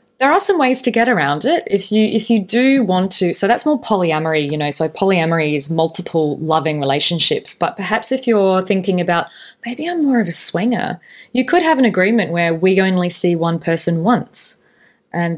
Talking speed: 205 wpm